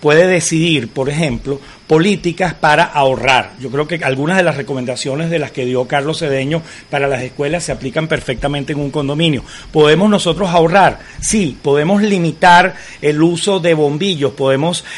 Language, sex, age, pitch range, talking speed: Spanish, male, 40-59, 140-170 Hz, 160 wpm